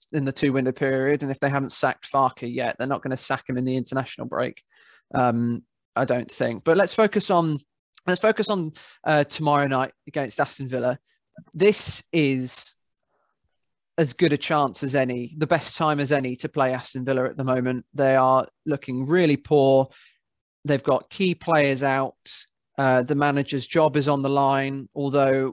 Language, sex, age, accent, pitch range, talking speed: English, male, 20-39, British, 135-155 Hz, 180 wpm